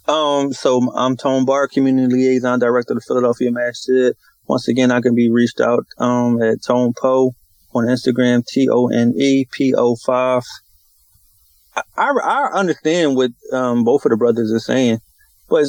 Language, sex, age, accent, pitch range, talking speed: English, male, 30-49, American, 115-140 Hz, 150 wpm